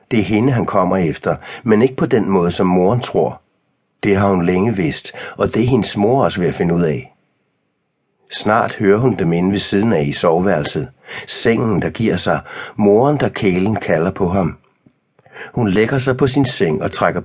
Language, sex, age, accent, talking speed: Danish, male, 60-79, native, 200 wpm